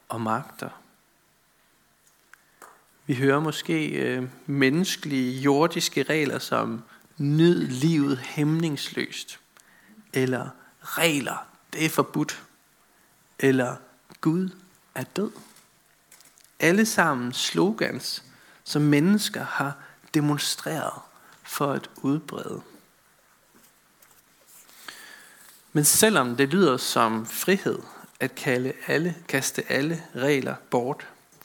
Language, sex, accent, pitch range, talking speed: Danish, male, native, 135-175 Hz, 80 wpm